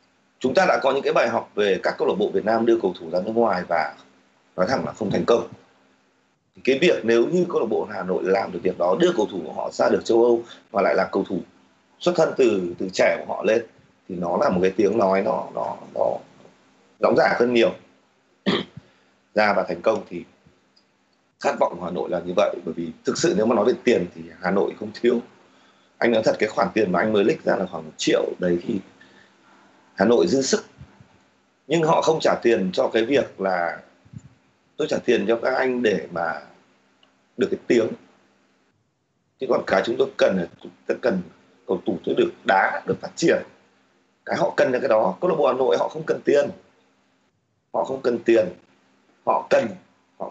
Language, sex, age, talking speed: Vietnamese, male, 30-49, 220 wpm